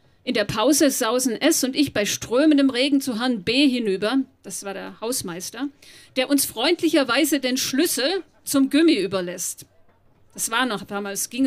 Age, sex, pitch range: 40-59, female, 215-280 Hz